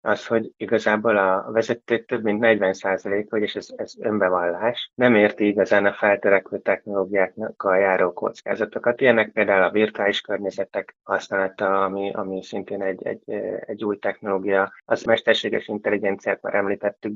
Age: 20-39